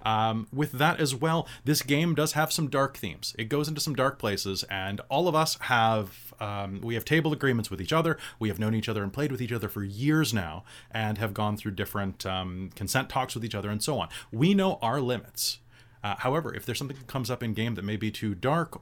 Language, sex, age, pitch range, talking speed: English, male, 30-49, 110-140 Hz, 245 wpm